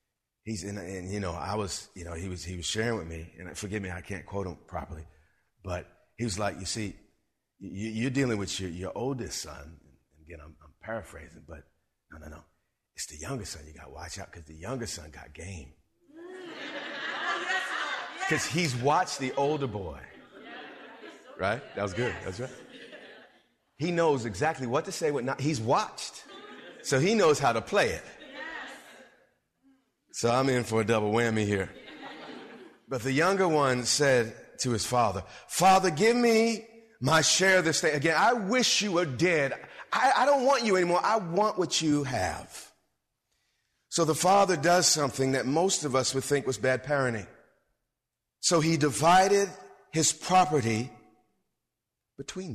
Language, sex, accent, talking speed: English, male, American, 170 wpm